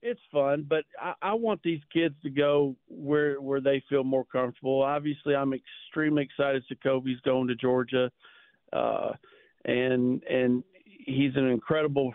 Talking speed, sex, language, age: 155 wpm, male, English, 50-69